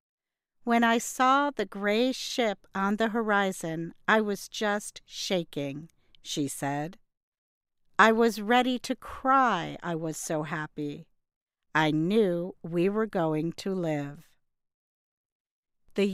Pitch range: 165-235 Hz